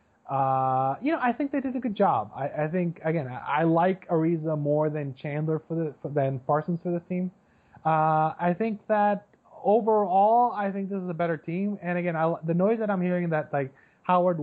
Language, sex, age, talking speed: English, male, 20-39, 215 wpm